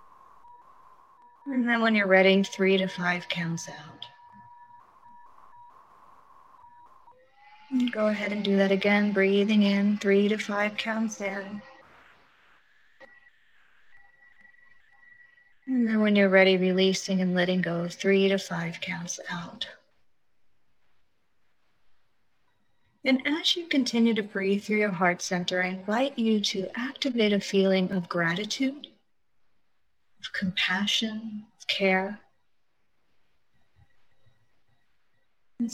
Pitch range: 190-265 Hz